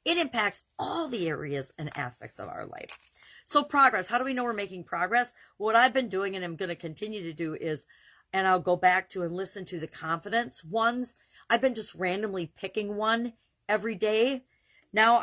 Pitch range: 170-225 Hz